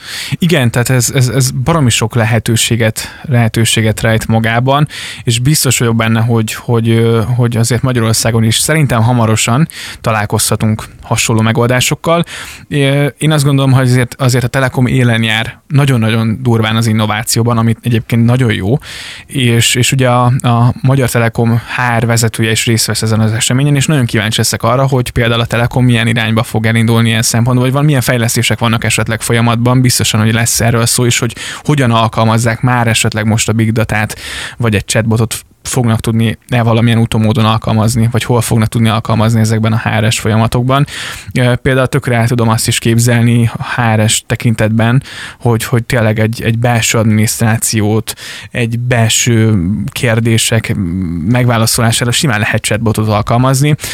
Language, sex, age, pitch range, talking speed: Hungarian, male, 20-39, 110-125 Hz, 150 wpm